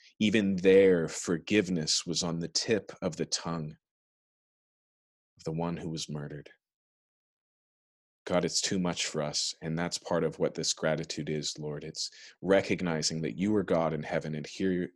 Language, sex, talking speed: English, male, 165 wpm